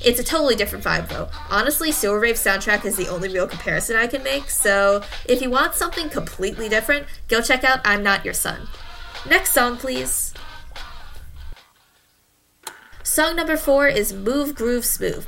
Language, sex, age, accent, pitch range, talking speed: English, female, 10-29, American, 200-270 Hz, 165 wpm